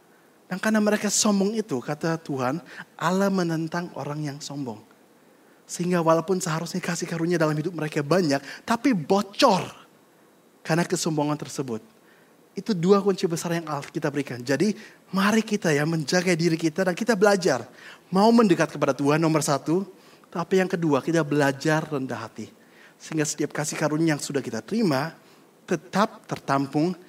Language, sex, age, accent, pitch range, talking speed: Indonesian, male, 30-49, native, 145-195 Hz, 145 wpm